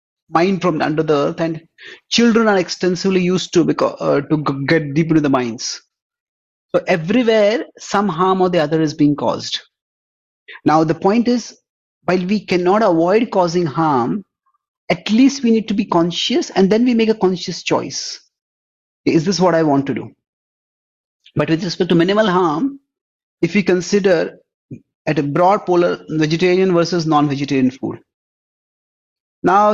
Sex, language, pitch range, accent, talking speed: male, English, 155-205 Hz, Indian, 155 wpm